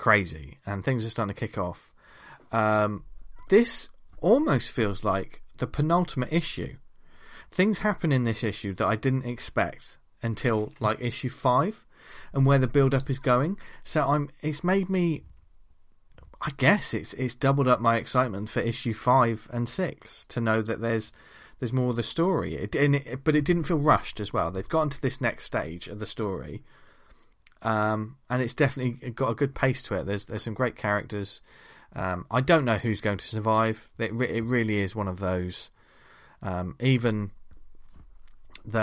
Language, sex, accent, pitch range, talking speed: English, male, British, 100-125 Hz, 180 wpm